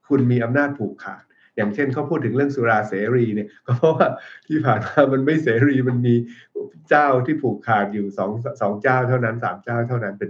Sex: male